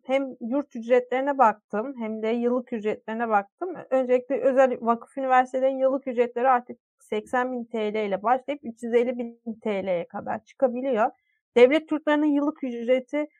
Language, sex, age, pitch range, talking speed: Turkish, female, 30-49, 235-275 Hz, 125 wpm